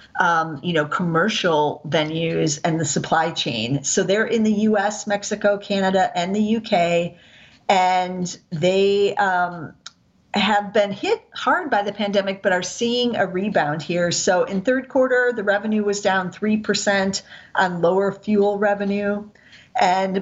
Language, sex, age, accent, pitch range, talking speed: English, female, 40-59, American, 170-210 Hz, 150 wpm